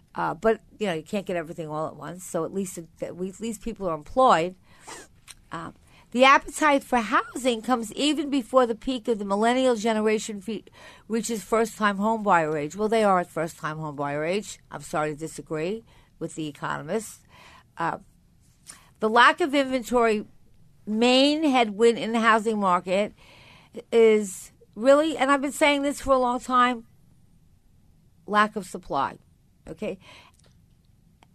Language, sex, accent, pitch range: English, female, American, 185-245 Hz